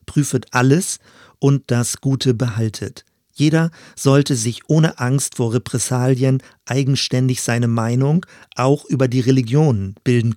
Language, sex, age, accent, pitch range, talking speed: German, male, 40-59, German, 120-140 Hz, 120 wpm